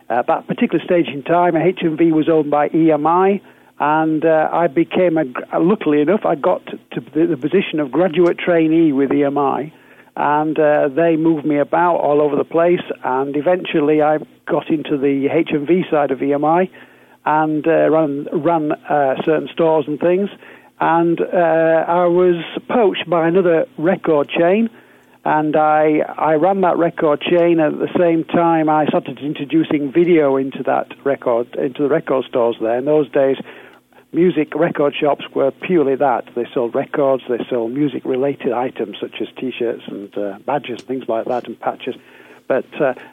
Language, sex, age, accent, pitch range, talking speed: English, male, 60-79, British, 140-170 Hz, 165 wpm